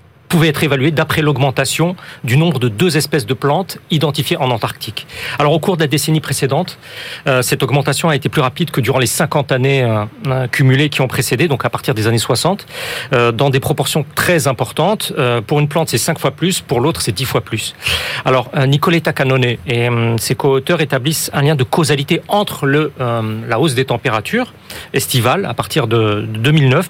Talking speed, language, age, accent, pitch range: 185 wpm, French, 40-59, French, 130-165 Hz